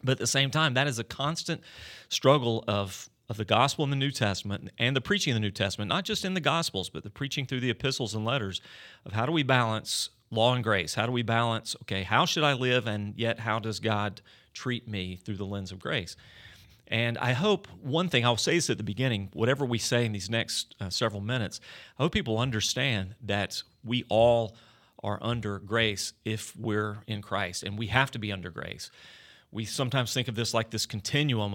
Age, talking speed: 40-59, 220 wpm